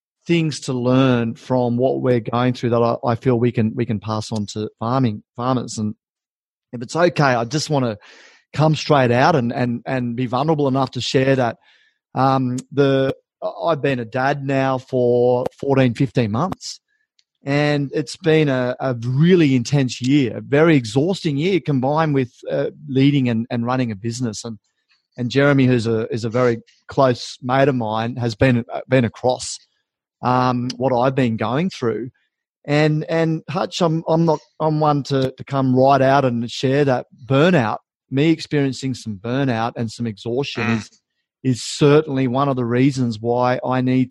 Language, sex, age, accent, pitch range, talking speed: English, male, 30-49, Australian, 120-145 Hz, 175 wpm